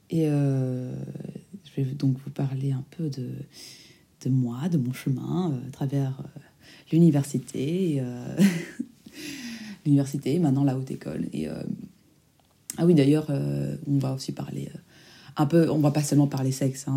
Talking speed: 165 wpm